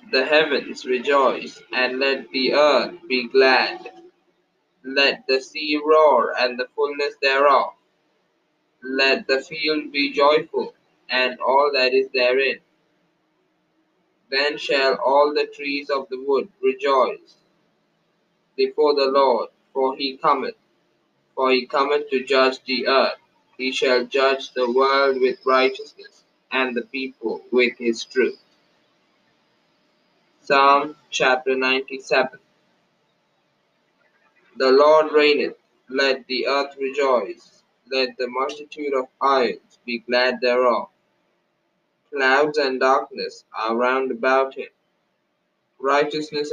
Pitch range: 130-150 Hz